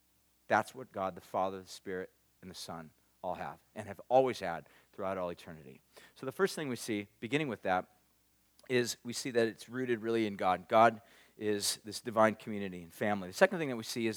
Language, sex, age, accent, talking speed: English, male, 40-59, American, 215 wpm